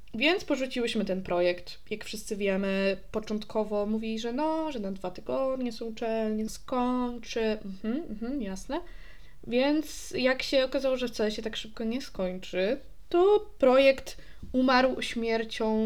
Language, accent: Polish, native